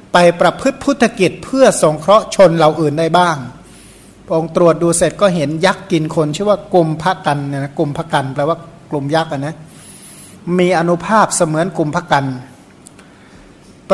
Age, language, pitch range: 60-79, Thai, 155-185 Hz